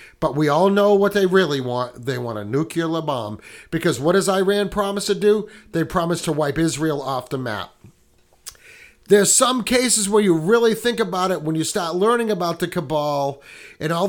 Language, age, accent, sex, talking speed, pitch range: English, 50-69, American, male, 195 wpm, 155-200 Hz